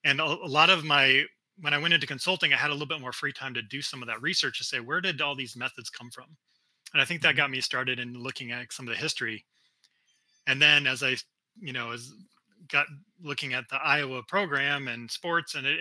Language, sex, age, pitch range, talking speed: English, male, 30-49, 120-145 Hz, 245 wpm